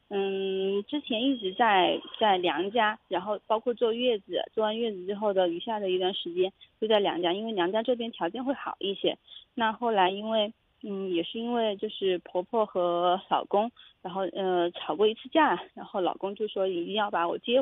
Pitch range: 190-250 Hz